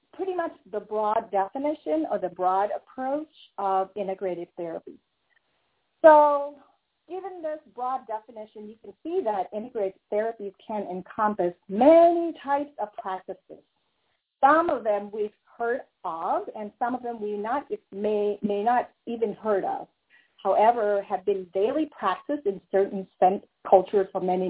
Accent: American